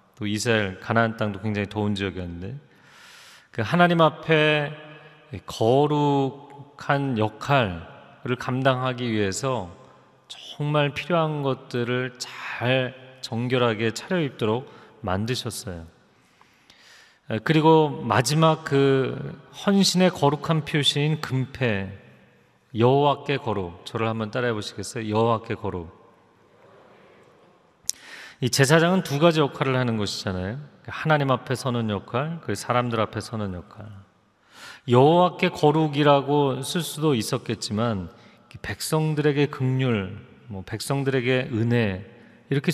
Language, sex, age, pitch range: Korean, male, 40-59, 110-150 Hz